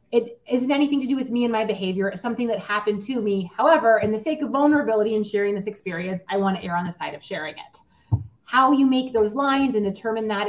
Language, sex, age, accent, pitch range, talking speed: English, female, 30-49, American, 170-220 Hz, 250 wpm